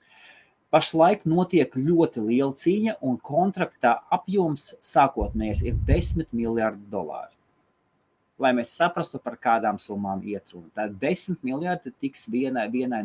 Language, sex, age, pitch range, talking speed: English, male, 30-49, 100-155 Hz, 120 wpm